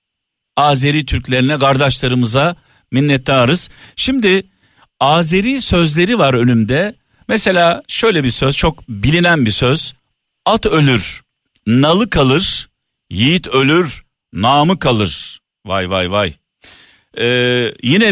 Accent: native